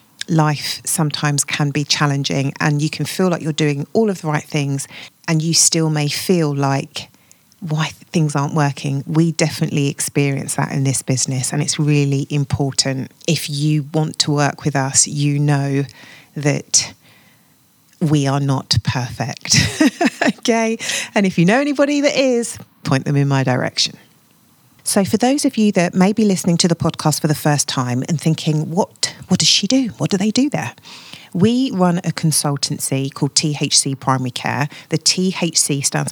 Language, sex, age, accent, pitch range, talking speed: English, female, 40-59, British, 140-170 Hz, 175 wpm